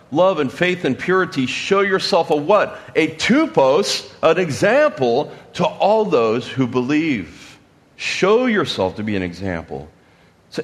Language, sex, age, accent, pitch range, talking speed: English, male, 40-59, American, 130-195 Hz, 140 wpm